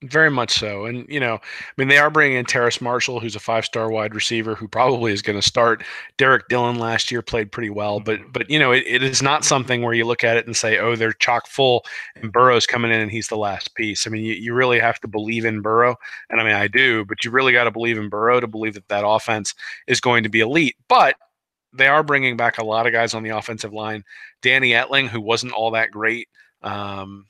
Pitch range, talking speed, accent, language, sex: 110-125 Hz, 255 wpm, American, English, male